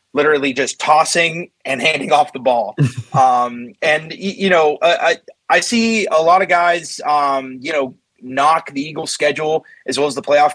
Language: English